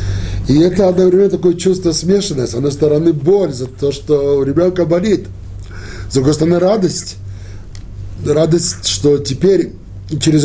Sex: male